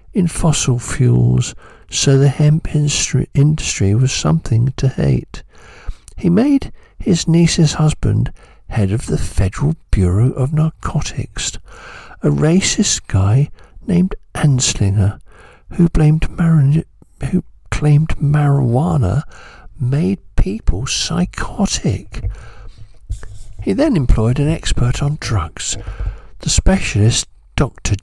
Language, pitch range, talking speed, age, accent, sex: English, 105-150 Hz, 100 wpm, 60-79, British, male